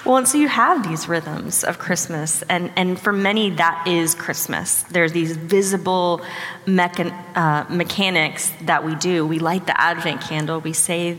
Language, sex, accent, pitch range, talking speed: English, female, American, 160-185 Hz, 165 wpm